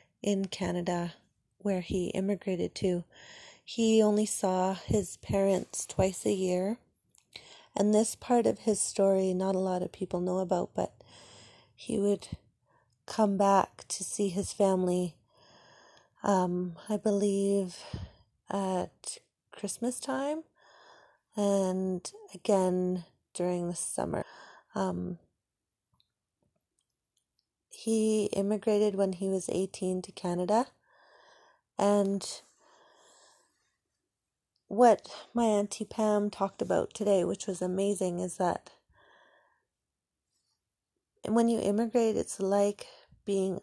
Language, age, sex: English, 30-49, female